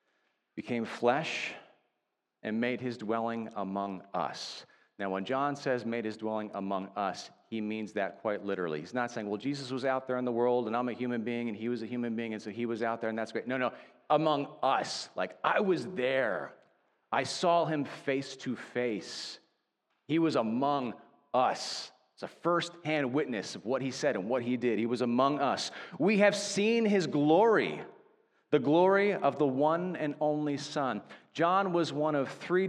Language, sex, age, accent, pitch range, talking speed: English, male, 40-59, American, 115-150 Hz, 195 wpm